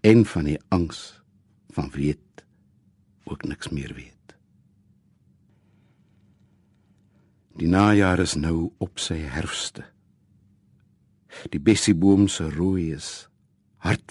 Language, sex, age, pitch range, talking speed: Dutch, male, 60-79, 90-105 Hz, 95 wpm